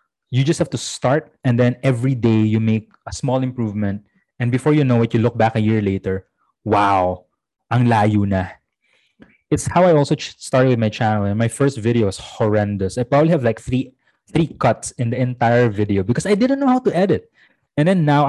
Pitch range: 105-135 Hz